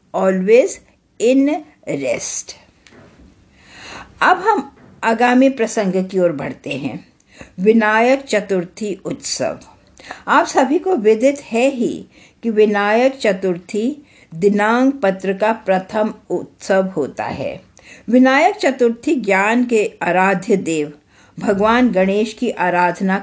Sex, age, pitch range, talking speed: female, 50-69, 185-245 Hz, 100 wpm